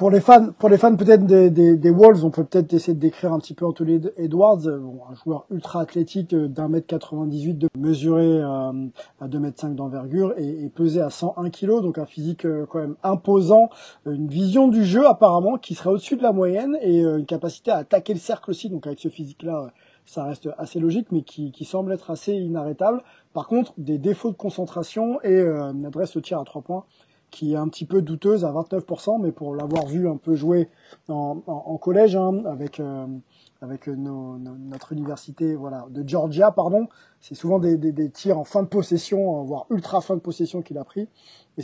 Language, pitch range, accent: French, 145-175 Hz, French